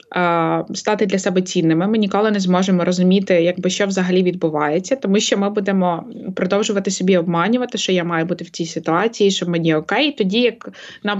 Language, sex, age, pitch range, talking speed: Ukrainian, female, 20-39, 180-210 Hz, 170 wpm